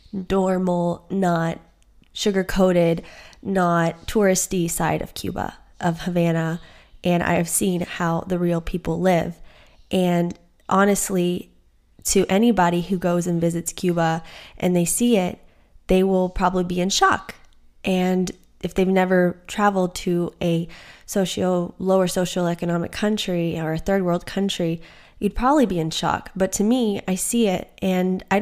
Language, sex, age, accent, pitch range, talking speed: English, female, 20-39, American, 175-200 Hz, 140 wpm